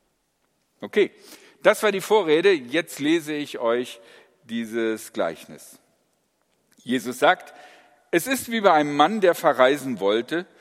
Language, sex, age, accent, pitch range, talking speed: German, male, 50-69, German, 125-185 Hz, 125 wpm